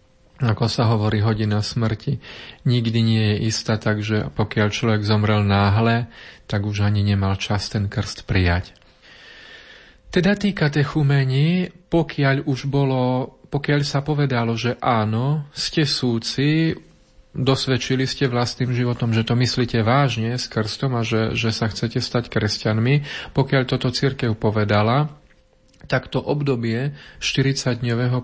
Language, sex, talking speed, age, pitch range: Slovak, male, 125 wpm, 40-59, 110-130 Hz